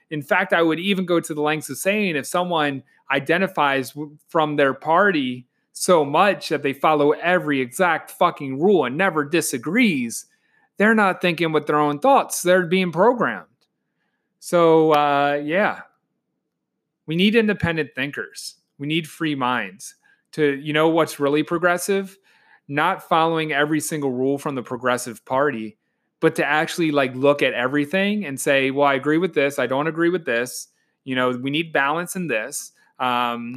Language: English